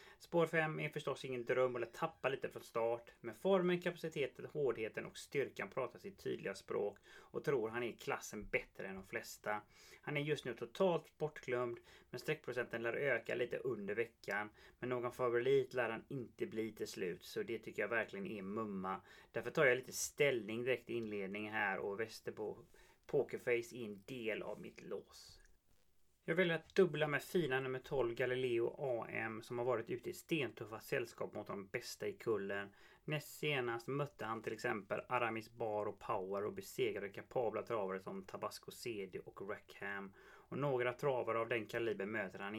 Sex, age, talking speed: male, 30-49, 175 wpm